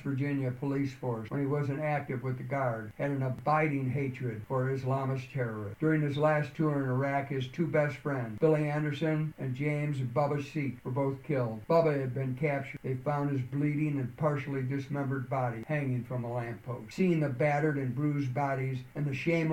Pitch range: 130-150 Hz